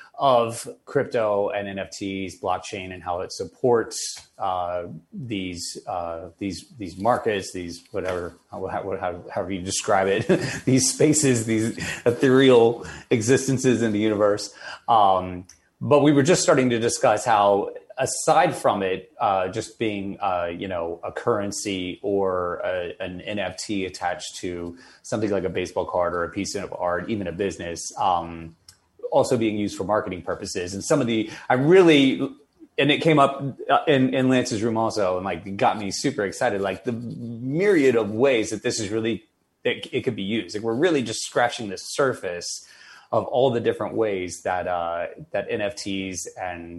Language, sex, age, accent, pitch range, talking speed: English, male, 30-49, American, 90-115 Hz, 165 wpm